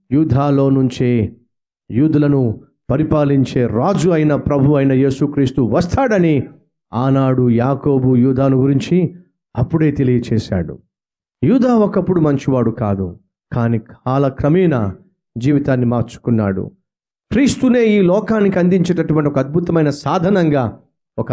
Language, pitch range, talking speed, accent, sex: Telugu, 125-185 Hz, 95 wpm, native, male